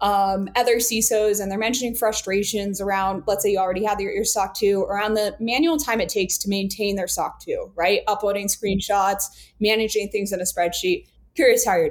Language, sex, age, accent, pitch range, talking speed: English, female, 20-39, American, 195-235 Hz, 190 wpm